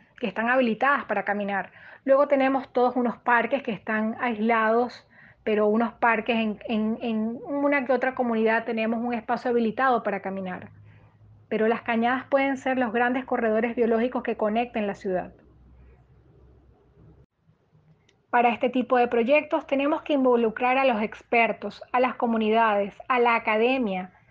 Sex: female